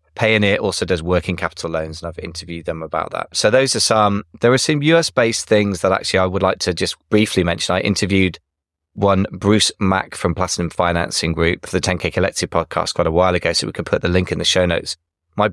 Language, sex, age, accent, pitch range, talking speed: English, male, 20-39, British, 85-100 Hz, 230 wpm